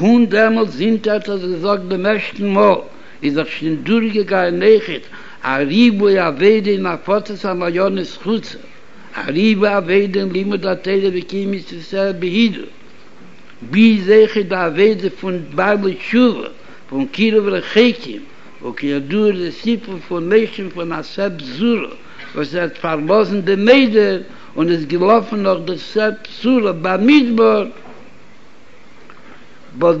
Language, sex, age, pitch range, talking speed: Hebrew, male, 60-79, 180-220 Hz, 95 wpm